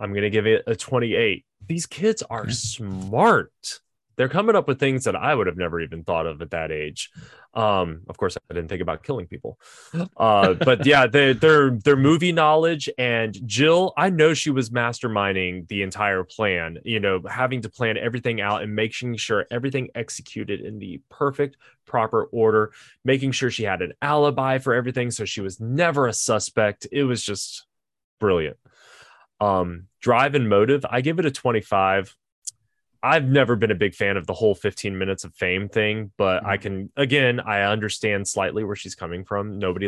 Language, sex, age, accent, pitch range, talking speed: English, male, 20-39, American, 100-130 Hz, 185 wpm